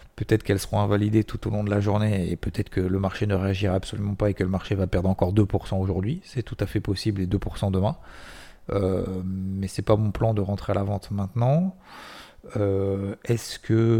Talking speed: 225 wpm